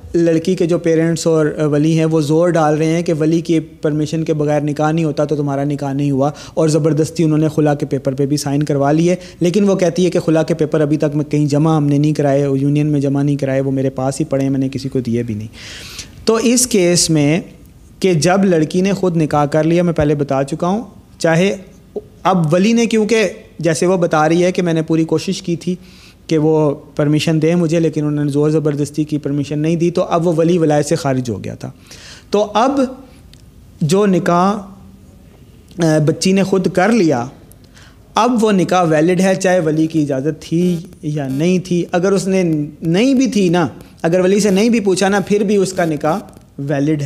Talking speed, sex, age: 220 wpm, male, 30-49